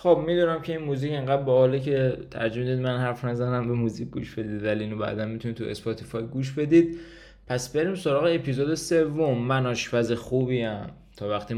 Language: Persian